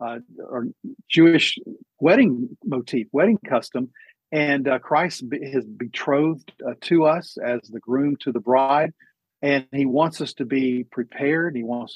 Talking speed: 155 wpm